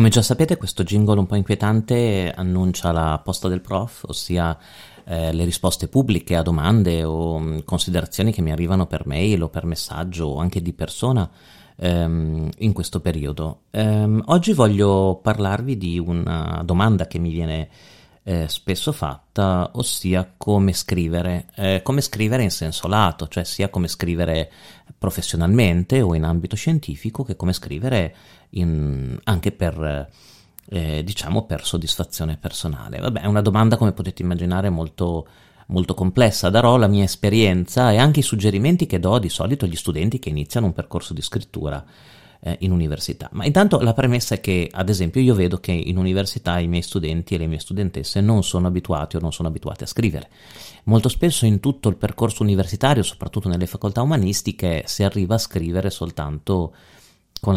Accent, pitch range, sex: native, 85-110 Hz, male